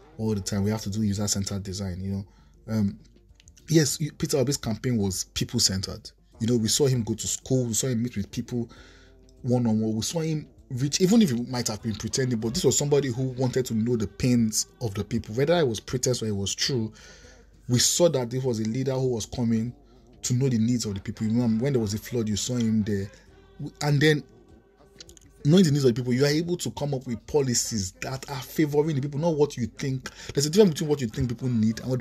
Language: English